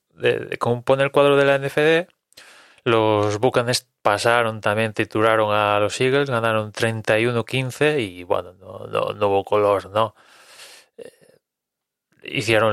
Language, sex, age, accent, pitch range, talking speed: English, male, 20-39, Spanish, 105-130 Hz, 125 wpm